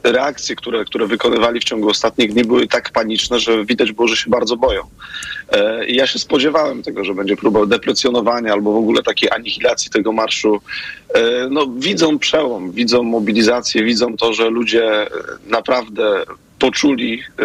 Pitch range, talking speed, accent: 115-145 Hz, 155 wpm, native